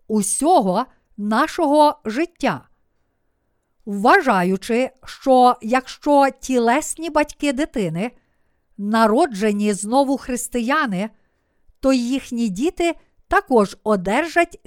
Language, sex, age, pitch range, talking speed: Ukrainian, female, 50-69, 215-295 Hz, 70 wpm